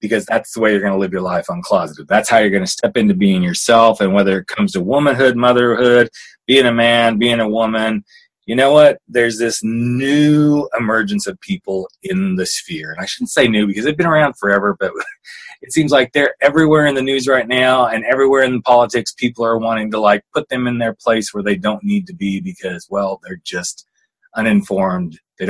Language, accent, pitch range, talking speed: English, American, 105-135 Hz, 220 wpm